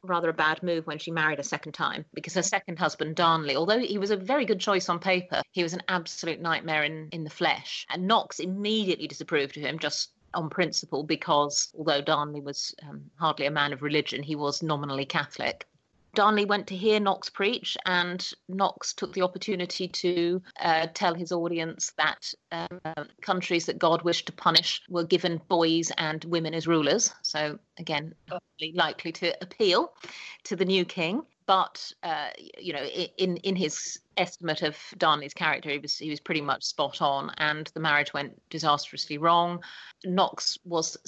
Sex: female